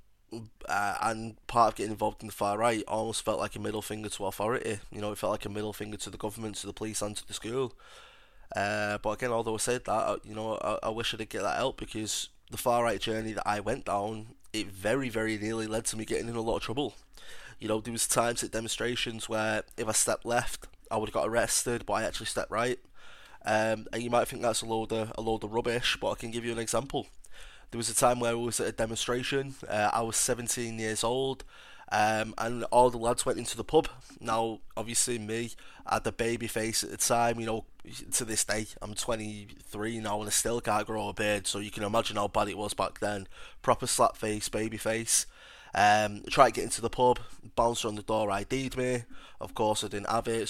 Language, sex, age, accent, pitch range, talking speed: English, male, 20-39, British, 105-115 Hz, 240 wpm